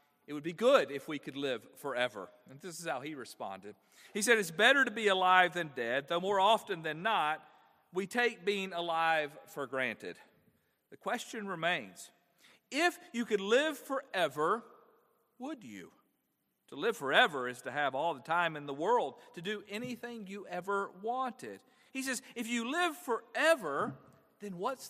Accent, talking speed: American, 170 wpm